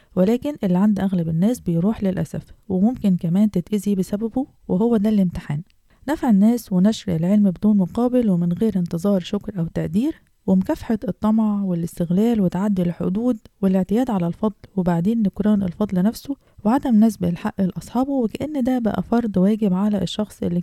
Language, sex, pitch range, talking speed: Arabic, female, 180-225 Hz, 145 wpm